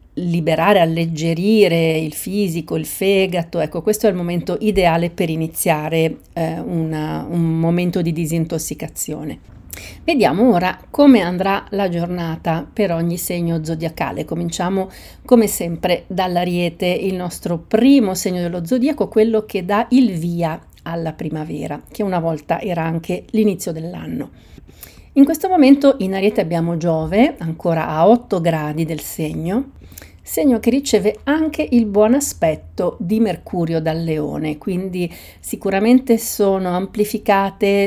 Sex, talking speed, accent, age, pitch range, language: female, 130 wpm, native, 40-59, 165-215 Hz, Italian